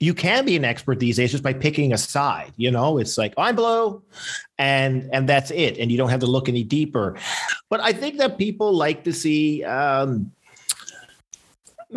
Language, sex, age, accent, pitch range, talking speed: English, male, 50-69, American, 135-180 Hz, 190 wpm